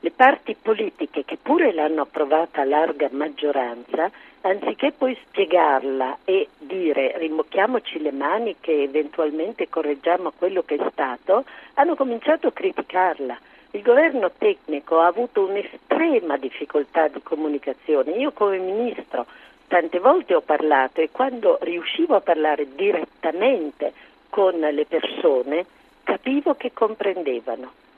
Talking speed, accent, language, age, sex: 120 wpm, native, Italian, 50-69, female